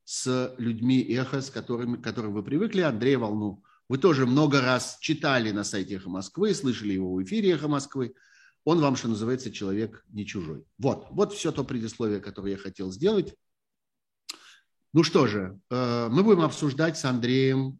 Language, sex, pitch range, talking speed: Russian, male, 115-150 Hz, 165 wpm